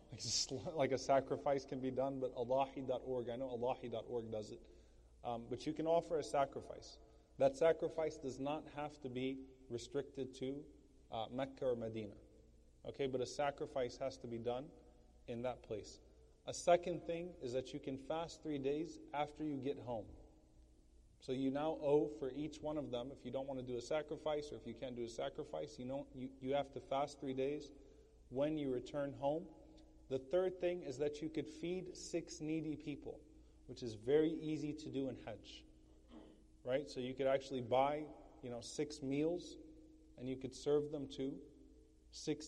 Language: English